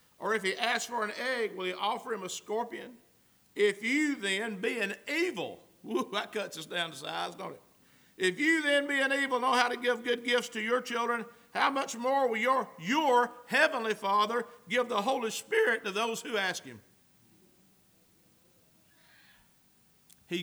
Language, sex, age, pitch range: English, male, 50-69, 155-220 Hz